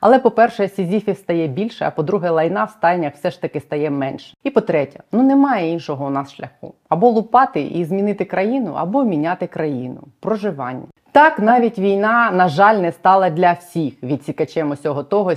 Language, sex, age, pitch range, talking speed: Ukrainian, female, 30-49, 150-200 Hz, 170 wpm